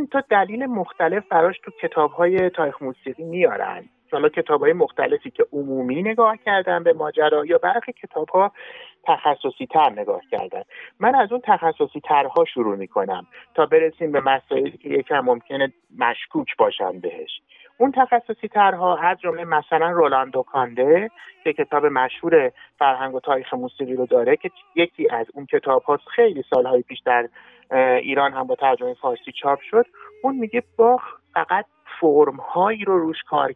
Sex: male